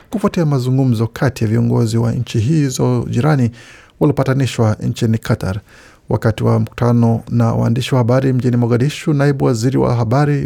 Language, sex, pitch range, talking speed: Swahili, male, 115-135 Hz, 145 wpm